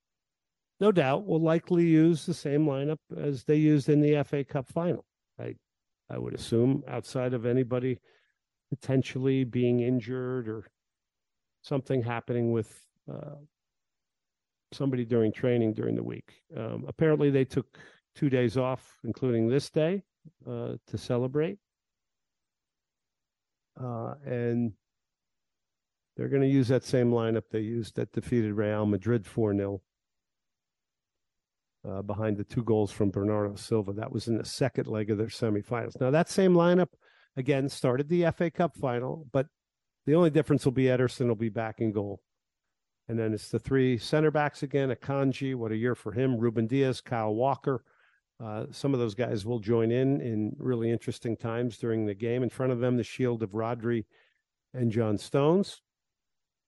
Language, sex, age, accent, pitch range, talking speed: English, male, 50-69, American, 115-140 Hz, 160 wpm